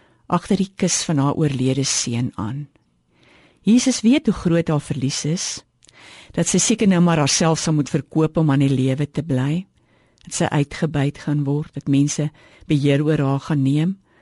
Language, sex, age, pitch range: Dutch, female, 50-69, 135-210 Hz